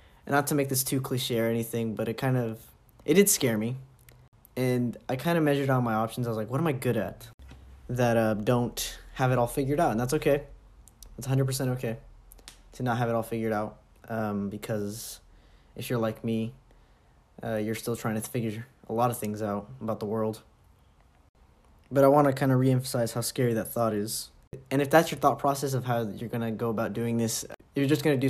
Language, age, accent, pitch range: English, 20-39, American, 110-135 Hz